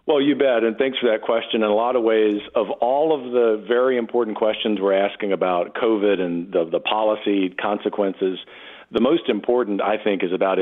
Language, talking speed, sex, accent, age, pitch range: English, 205 wpm, male, American, 50-69, 105-125 Hz